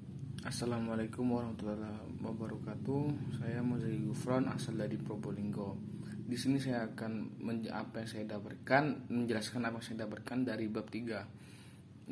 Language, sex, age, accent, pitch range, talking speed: Indonesian, male, 20-39, native, 115-135 Hz, 130 wpm